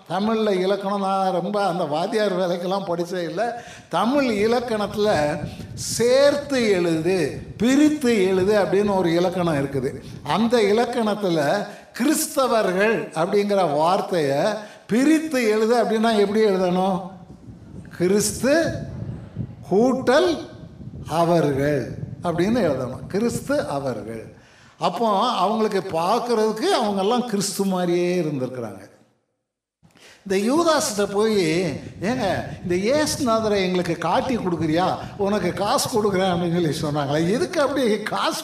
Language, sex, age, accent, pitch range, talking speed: Tamil, male, 60-79, native, 175-235 Hz, 90 wpm